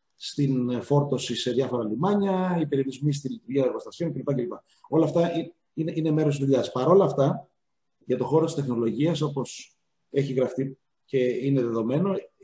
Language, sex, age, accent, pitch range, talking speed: Greek, male, 40-59, native, 130-175 Hz, 155 wpm